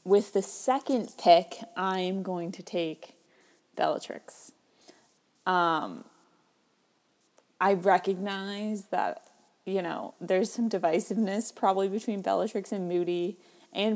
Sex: female